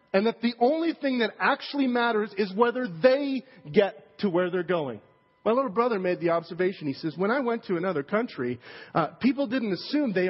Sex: male